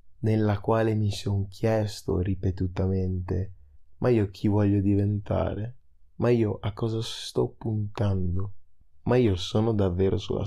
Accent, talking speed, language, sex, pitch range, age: native, 125 wpm, Italian, male, 90-110 Hz, 20-39